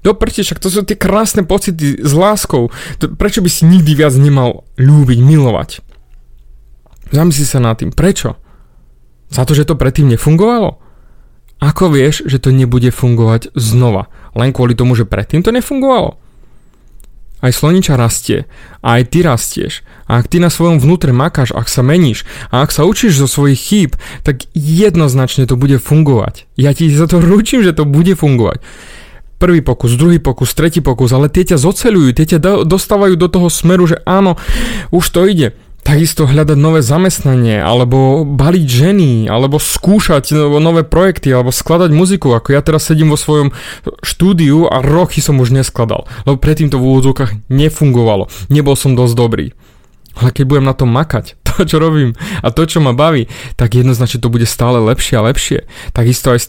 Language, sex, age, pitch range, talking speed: Slovak, male, 30-49, 125-170 Hz, 170 wpm